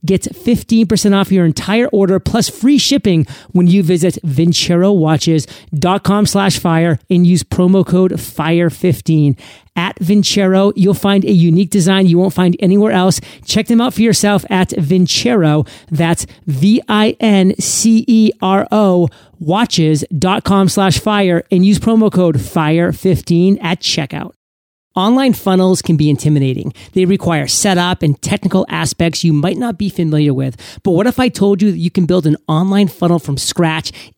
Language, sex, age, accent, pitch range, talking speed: English, male, 40-59, American, 155-195 Hz, 145 wpm